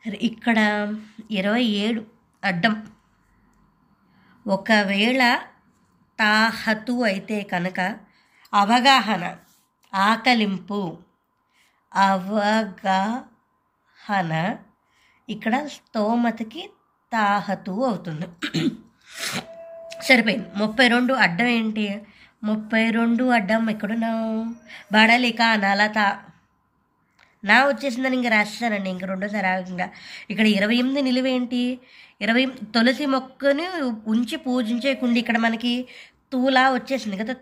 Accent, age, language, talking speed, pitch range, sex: native, 20-39, Telugu, 75 wpm, 205-250 Hz, male